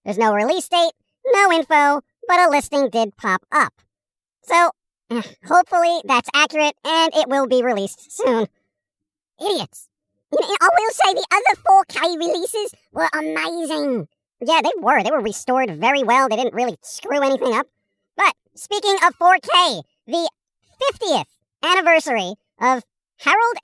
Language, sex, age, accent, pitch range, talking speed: English, male, 40-59, American, 250-345 Hz, 140 wpm